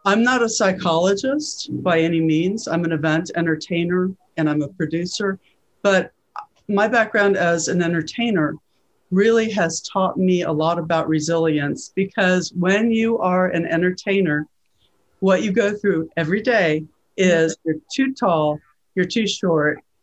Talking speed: 145 wpm